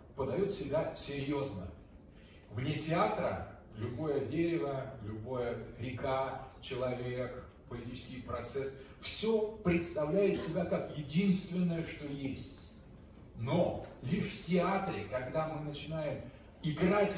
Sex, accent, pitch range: male, native, 115-185 Hz